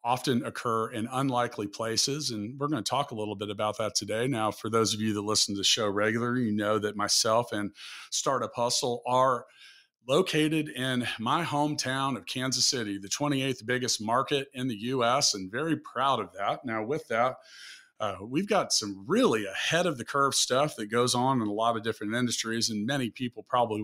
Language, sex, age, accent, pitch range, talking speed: English, male, 40-59, American, 105-130 Hz, 200 wpm